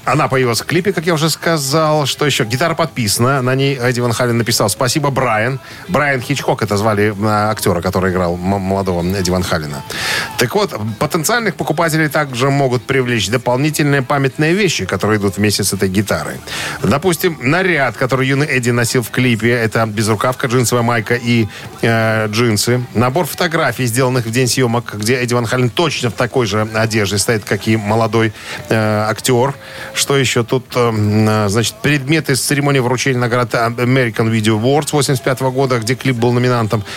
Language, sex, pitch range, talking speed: Russian, male, 105-140 Hz, 170 wpm